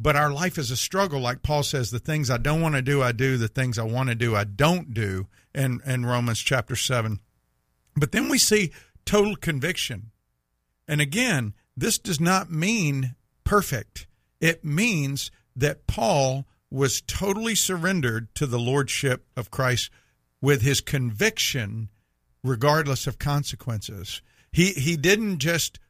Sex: male